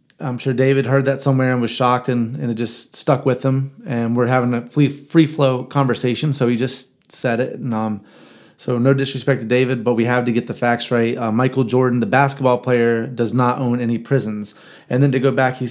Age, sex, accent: 30-49, male, American